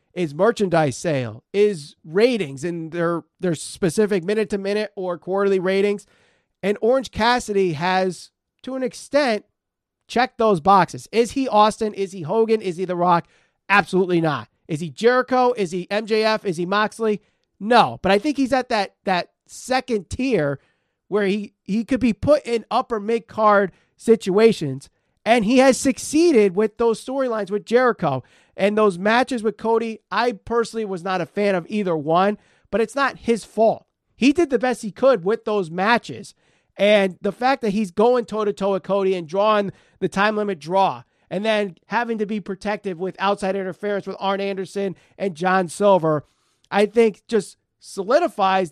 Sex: male